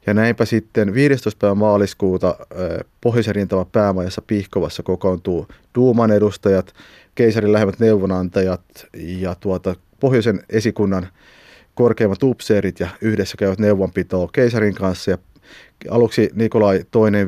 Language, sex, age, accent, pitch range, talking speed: Finnish, male, 30-49, native, 95-110 Hz, 110 wpm